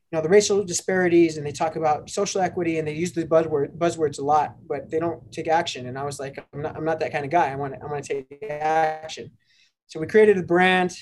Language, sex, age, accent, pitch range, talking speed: English, male, 20-39, American, 145-165 Hz, 265 wpm